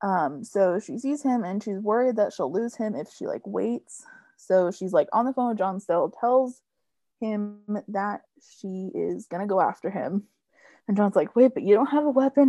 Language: English